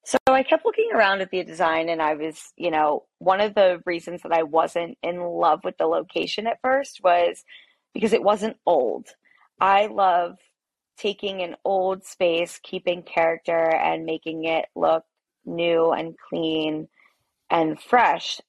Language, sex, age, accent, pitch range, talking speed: English, female, 20-39, American, 170-200 Hz, 160 wpm